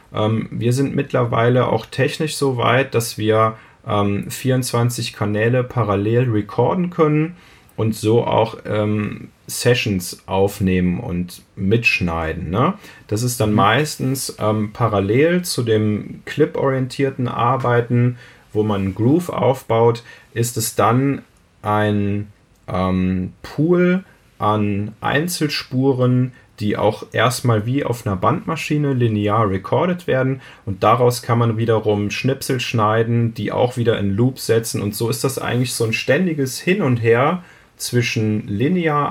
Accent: German